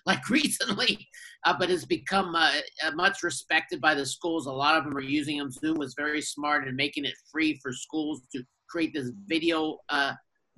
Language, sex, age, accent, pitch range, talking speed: English, male, 50-69, American, 140-175 Hz, 195 wpm